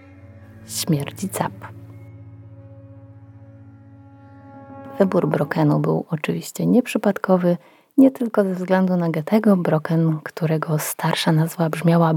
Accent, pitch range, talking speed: native, 155-190 Hz, 90 wpm